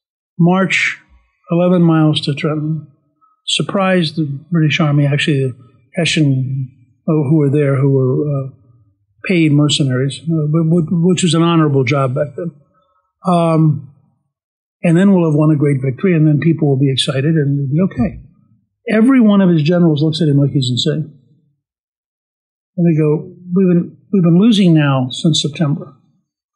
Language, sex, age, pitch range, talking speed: English, male, 60-79, 145-180 Hz, 155 wpm